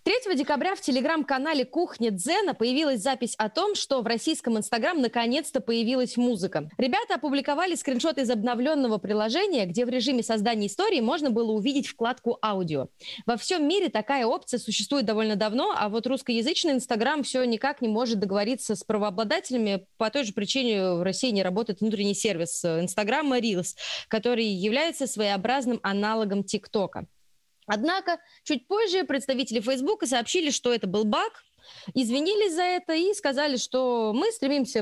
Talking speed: 150 wpm